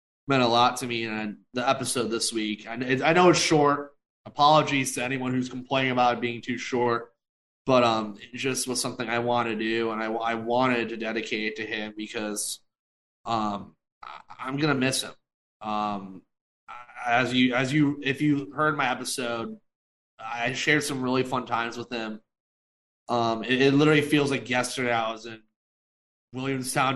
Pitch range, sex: 110-130 Hz, male